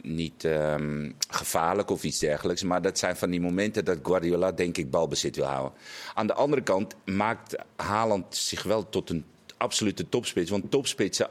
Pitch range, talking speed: 85-95 Hz, 180 wpm